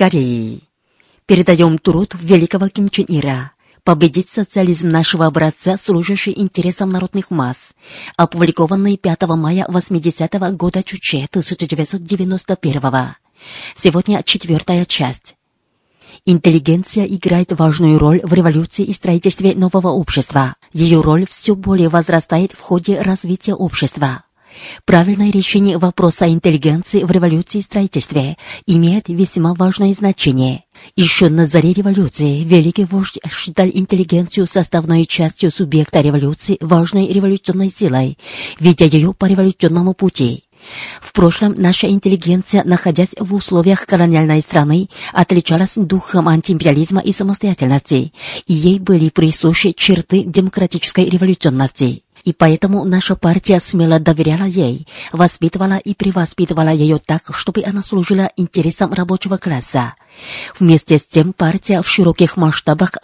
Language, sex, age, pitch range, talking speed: Russian, female, 30-49, 165-190 Hz, 115 wpm